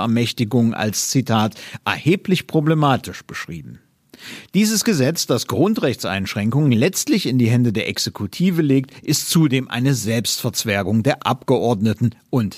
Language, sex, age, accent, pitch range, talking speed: German, male, 50-69, German, 105-150 Hz, 115 wpm